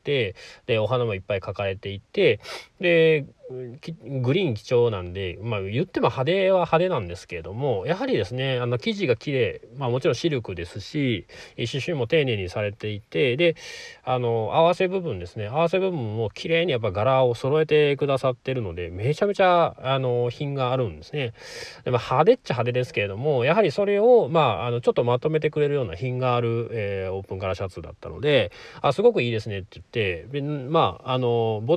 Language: Japanese